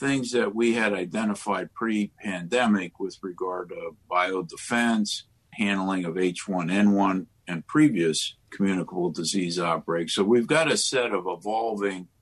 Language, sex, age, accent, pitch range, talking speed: English, male, 50-69, American, 90-105 Hz, 125 wpm